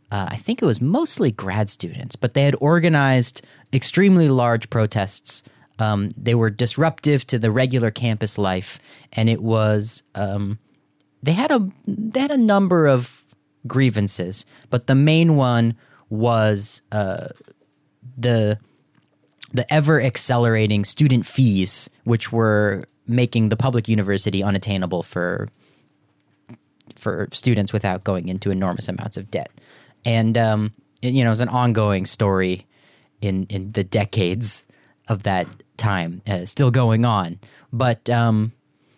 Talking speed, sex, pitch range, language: 135 wpm, male, 105-135 Hz, English